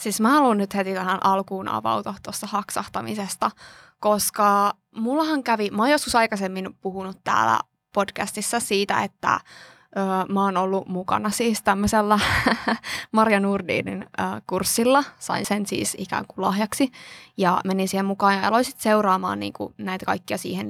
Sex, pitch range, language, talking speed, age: female, 195-230 Hz, Finnish, 150 wpm, 20-39